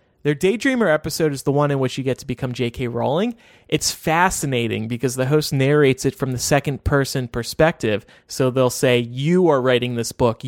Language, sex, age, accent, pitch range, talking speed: English, male, 30-49, American, 125-160 Hz, 190 wpm